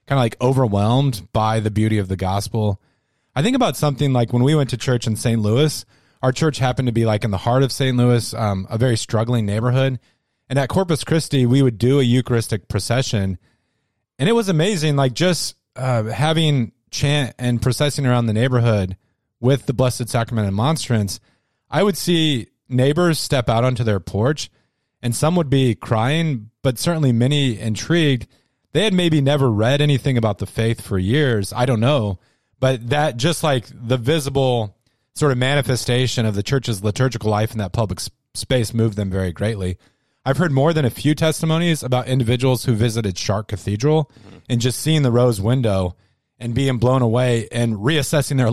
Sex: male